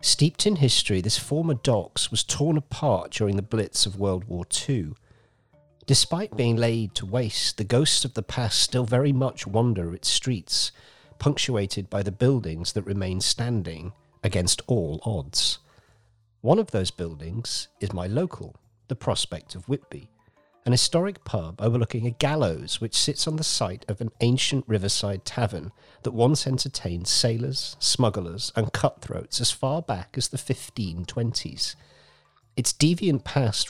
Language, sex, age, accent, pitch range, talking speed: English, male, 50-69, British, 105-135 Hz, 150 wpm